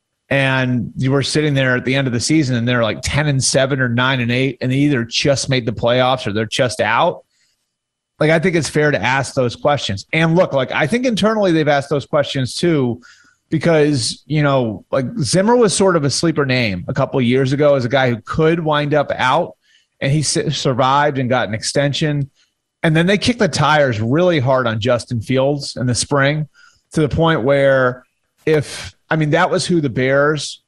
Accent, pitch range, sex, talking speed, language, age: American, 125-150 Hz, male, 215 wpm, English, 30-49